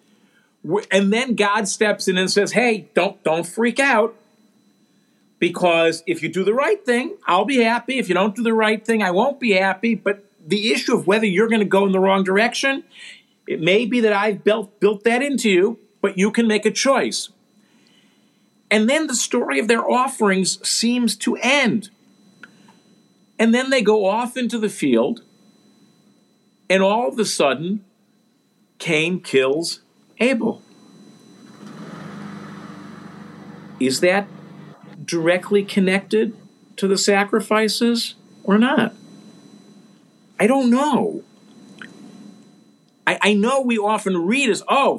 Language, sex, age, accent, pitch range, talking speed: English, male, 50-69, American, 195-230 Hz, 145 wpm